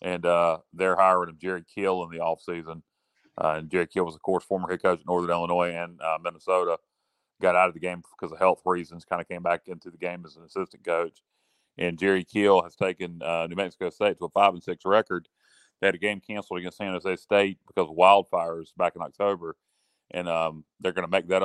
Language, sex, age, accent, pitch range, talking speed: English, male, 40-59, American, 85-95 Hz, 230 wpm